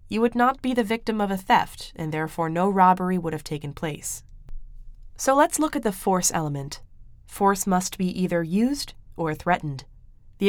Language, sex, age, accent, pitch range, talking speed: English, female, 20-39, American, 155-190 Hz, 185 wpm